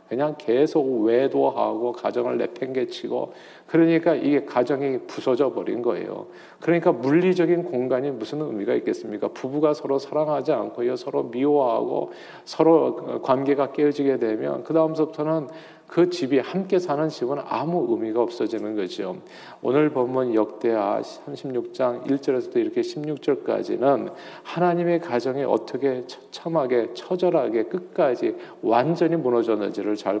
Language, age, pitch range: Korean, 40-59, 135-175 Hz